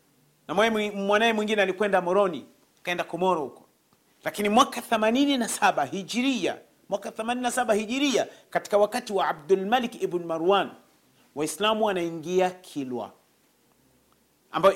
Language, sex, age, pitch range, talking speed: Swahili, male, 40-59, 190-245 Hz, 105 wpm